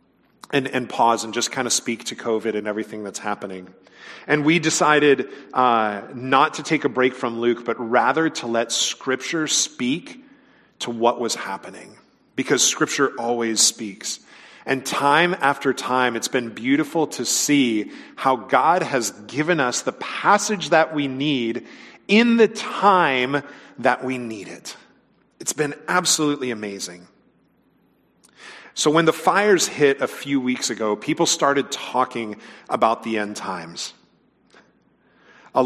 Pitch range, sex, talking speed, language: 120-150 Hz, male, 145 wpm, English